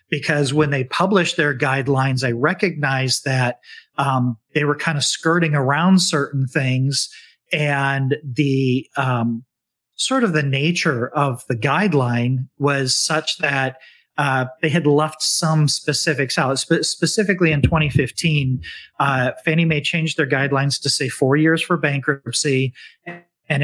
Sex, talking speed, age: male, 140 wpm, 40-59